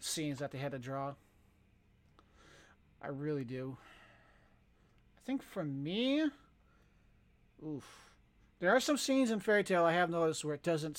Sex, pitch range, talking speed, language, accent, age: male, 140-170 Hz, 145 wpm, English, American, 40-59